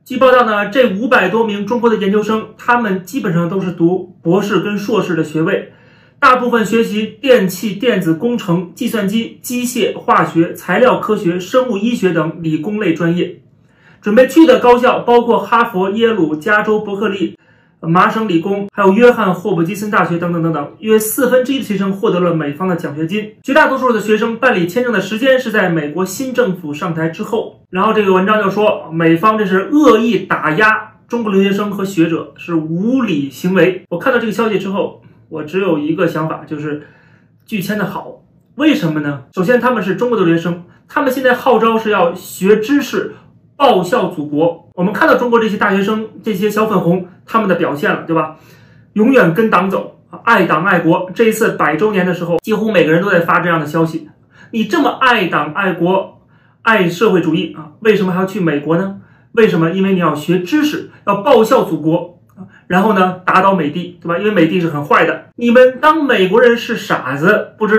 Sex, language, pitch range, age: male, Chinese, 165-225 Hz, 30-49